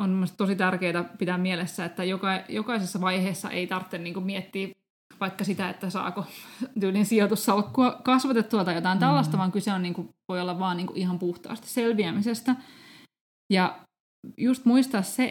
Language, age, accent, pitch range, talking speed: Finnish, 20-39, native, 185-235 Hz, 155 wpm